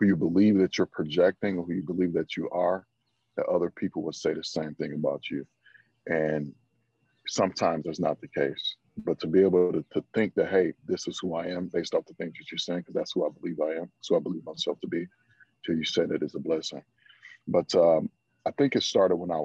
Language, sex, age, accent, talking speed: English, male, 40-59, American, 245 wpm